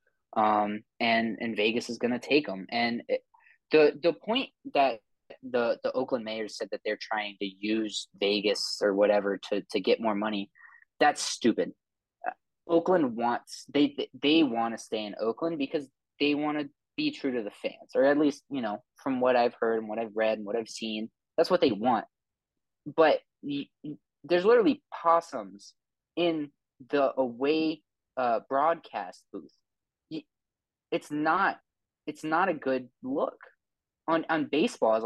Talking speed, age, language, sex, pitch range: 165 wpm, 20-39, English, male, 115-155 Hz